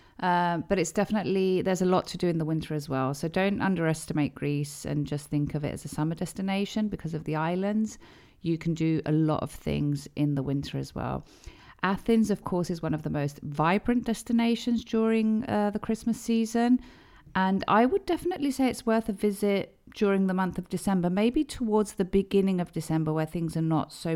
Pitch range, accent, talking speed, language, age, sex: 155-200 Hz, British, 205 wpm, Greek, 40-59, female